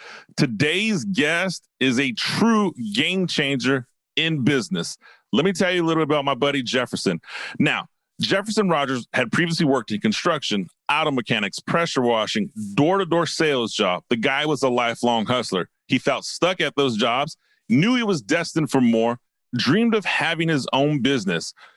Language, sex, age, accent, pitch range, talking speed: English, male, 30-49, American, 135-195 Hz, 165 wpm